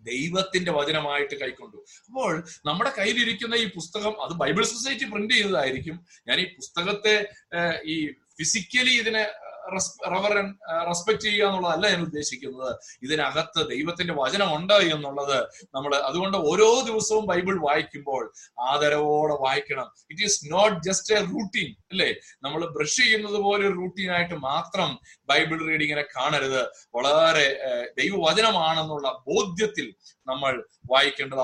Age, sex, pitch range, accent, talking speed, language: 30-49, male, 140-205 Hz, native, 105 wpm, Malayalam